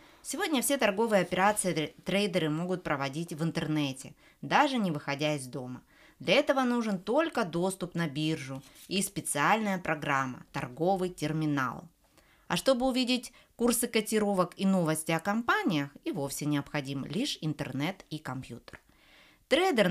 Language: Russian